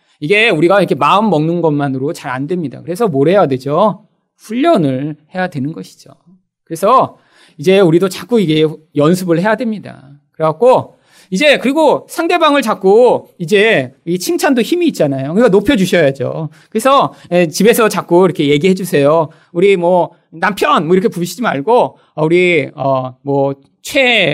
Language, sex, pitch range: Korean, male, 155-250 Hz